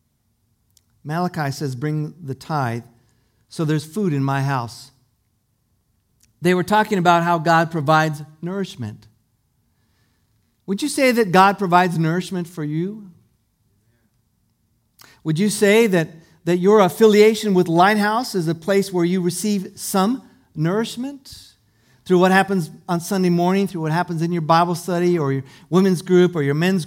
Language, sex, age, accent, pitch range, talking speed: English, male, 50-69, American, 120-185 Hz, 145 wpm